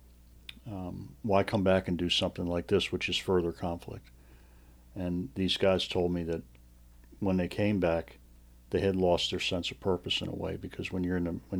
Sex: male